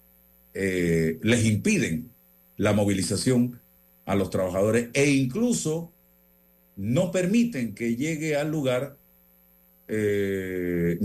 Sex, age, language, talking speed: male, 50-69, Spanish, 90 wpm